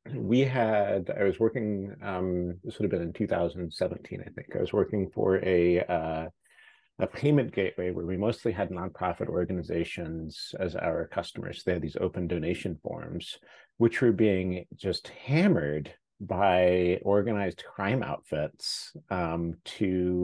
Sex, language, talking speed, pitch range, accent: male, English, 145 wpm, 85-105 Hz, American